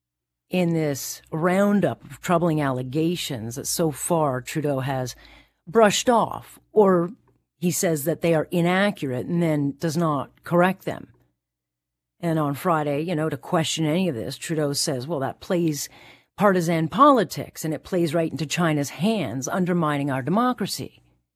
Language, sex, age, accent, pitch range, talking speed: English, female, 40-59, American, 135-180 Hz, 150 wpm